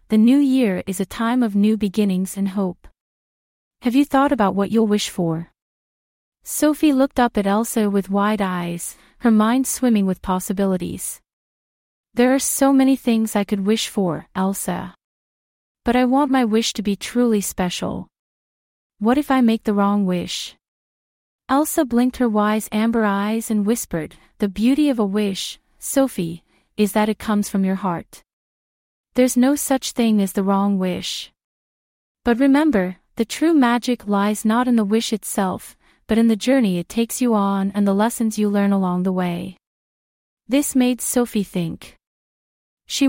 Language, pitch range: English, 195-245 Hz